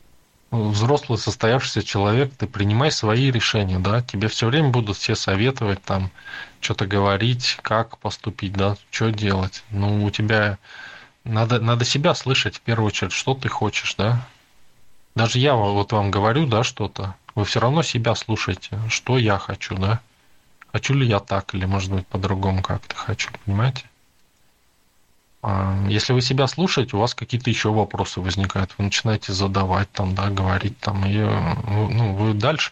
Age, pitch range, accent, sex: 20-39, 100-120 Hz, native, male